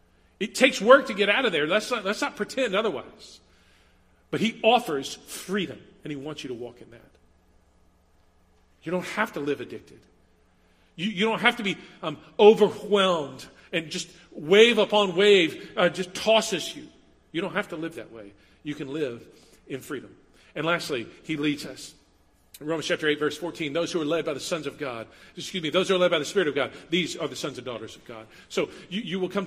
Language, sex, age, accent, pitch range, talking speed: English, male, 40-59, American, 115-195 Hz, 210 wpm